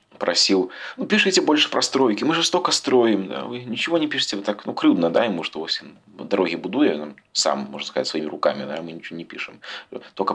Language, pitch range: Russian, 85-105 Hz